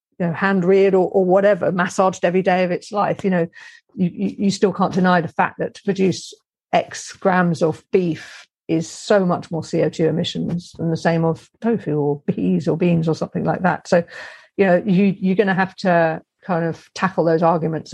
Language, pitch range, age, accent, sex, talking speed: English, 170-195 Hz, 50-69, British, female, 195 wpm